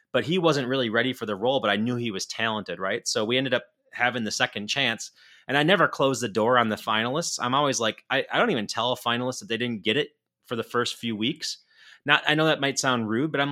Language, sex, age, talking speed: English, male, 30-49, 270 wpm